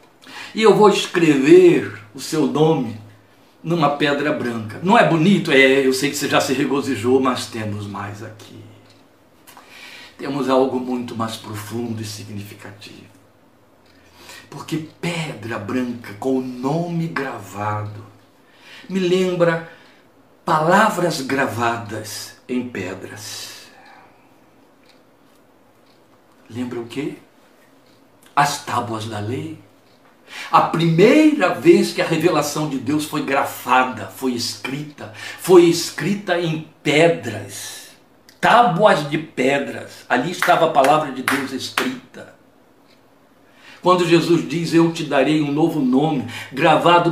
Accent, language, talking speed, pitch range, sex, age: Brazilian, Portuguese, 110 wpm, 130-210 Hz, male, 60-79